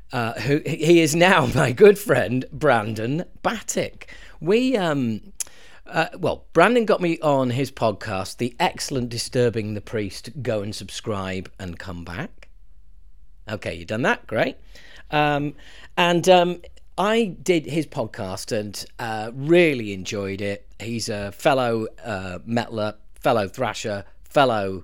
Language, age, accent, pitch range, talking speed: English, 40-59, British, 105-145 Hz, 135 wpm